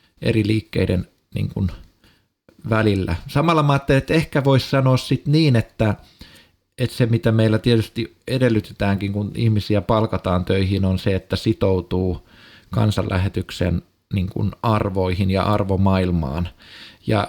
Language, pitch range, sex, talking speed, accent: Finnish, 95-115 Hz, male, 125 wpm, native